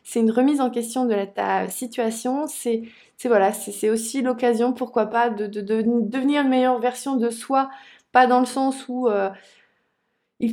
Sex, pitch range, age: female, 225-270 Hz, 20-39